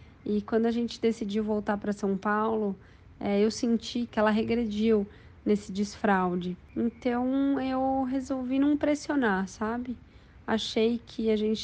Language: Portuguese